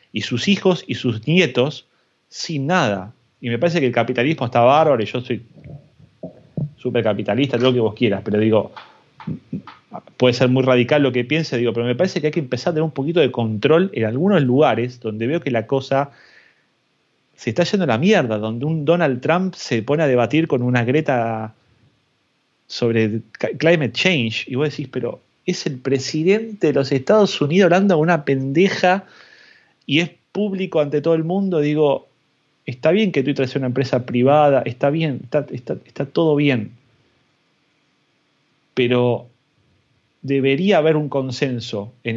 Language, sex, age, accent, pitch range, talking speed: Spanish, male, 30-49, Argentinian, 120-155 Hz, 170 wpm